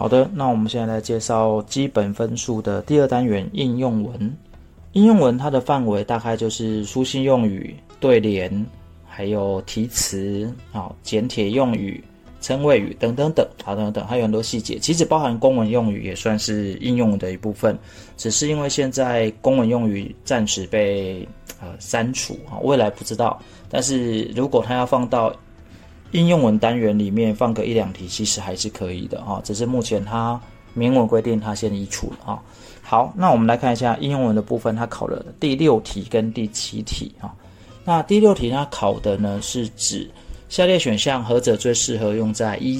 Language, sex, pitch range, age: Chinese, male, 105-125 Hz, 20-39